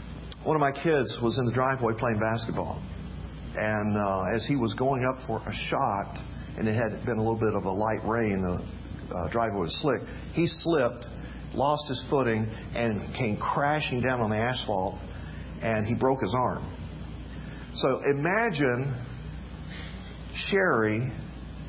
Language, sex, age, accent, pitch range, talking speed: English, male, 50-69, American, 110-145 Hz, 155 wpm